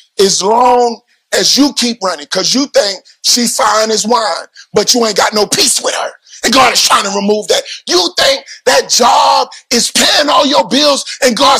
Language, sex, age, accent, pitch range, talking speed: English, male, 30-49, American, 215-275 Hz, 200 wpm